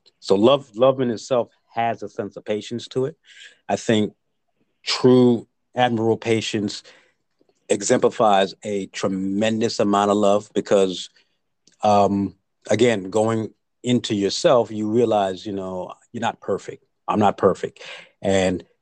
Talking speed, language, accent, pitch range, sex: 130 wpm, English, American, 100-115 Hz, male